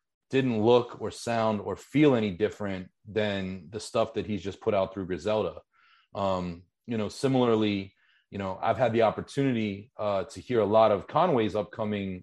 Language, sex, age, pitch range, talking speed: English, male, 30-49, 100-120 Hz, 175 wpm